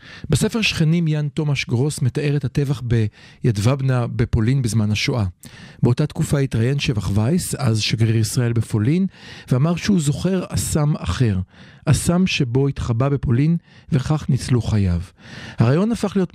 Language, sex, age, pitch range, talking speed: Hebrew, male, 50-69, 115-145 Hz, 135 wpm